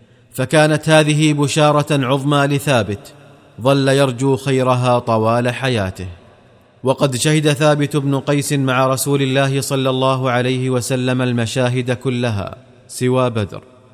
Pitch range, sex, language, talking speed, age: 120-140 Hz, male, Arabic, 110 wpm, 30-49